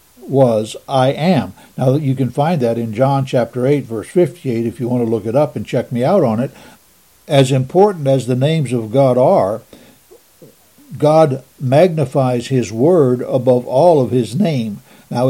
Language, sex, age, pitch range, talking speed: English, male, 60-79, 125-155 Hz, 180 wpm